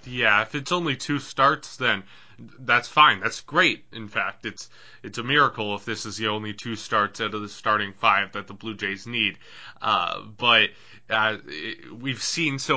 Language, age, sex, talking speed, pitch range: English, 20-39, male, 195 wpm, 105-135 Hz